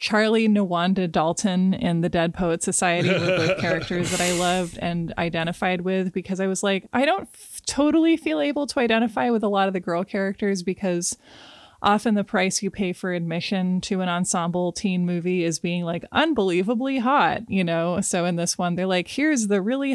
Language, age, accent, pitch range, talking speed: English, 20-39, American, 180-230 Hz, 195 wpm